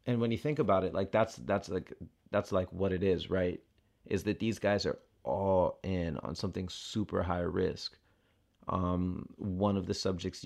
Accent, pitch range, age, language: American, 95-110 Hz, 30-49, English